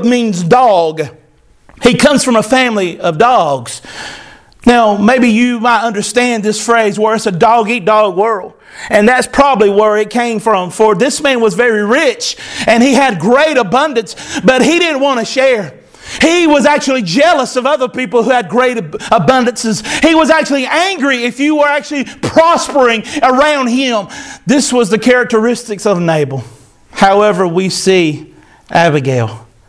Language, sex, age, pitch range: English, male, 40-59, 220-275 Hz